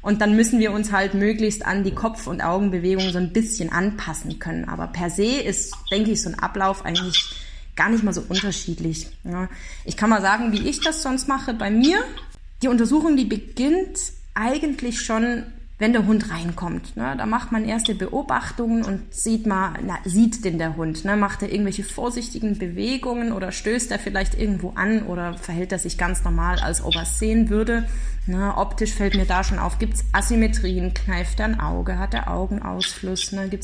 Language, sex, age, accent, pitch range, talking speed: German, female, 20-39, German, 185-225 Hz, 195 wpm